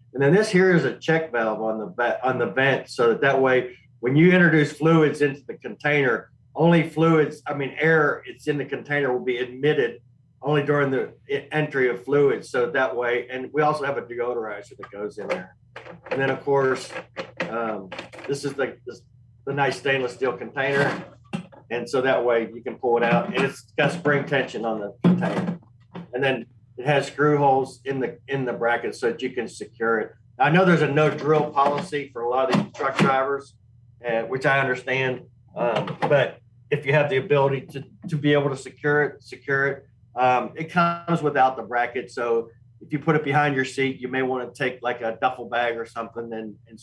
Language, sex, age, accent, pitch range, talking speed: English, male, 50-69, American, 120-145 Hz, 205 wpm